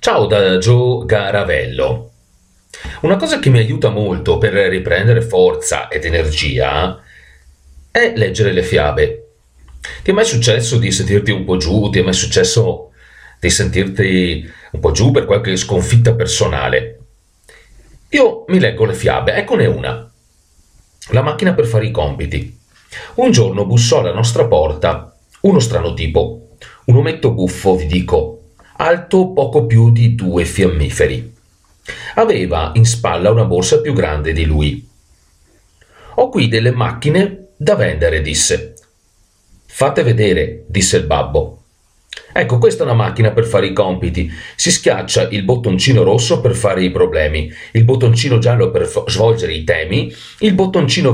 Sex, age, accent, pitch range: male, 40-59, native, 90-130 Hz